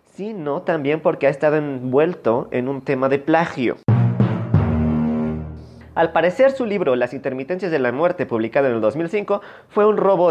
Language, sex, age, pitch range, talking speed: Spanish, male, 30-49, 125-170 Hz, 155 wpm